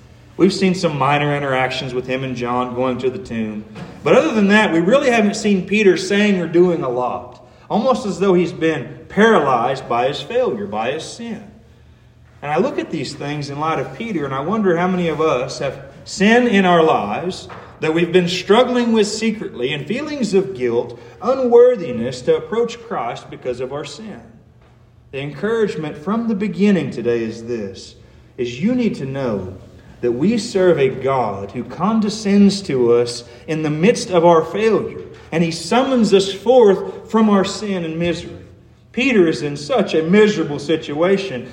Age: 40-59